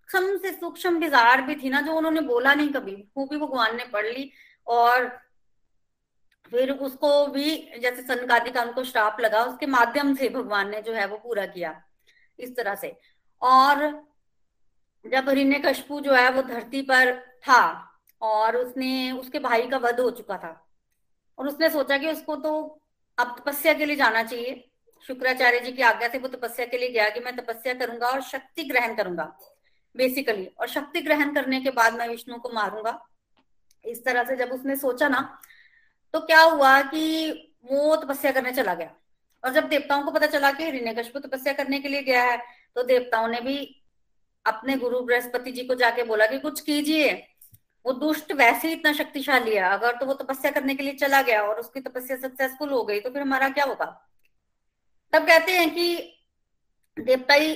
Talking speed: 180 wpm